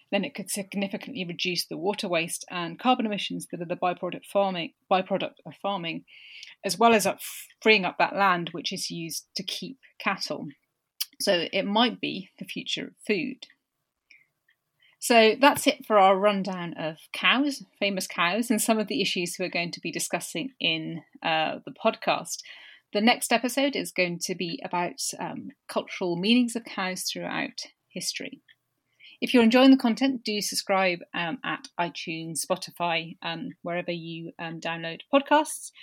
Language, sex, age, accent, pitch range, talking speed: English, female, 30-49, British, 175-240 Hz, 160 wpm